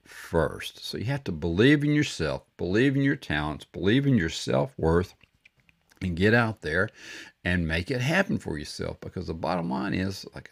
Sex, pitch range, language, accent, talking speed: male, 80-110 Hz, English, American, 185 wpm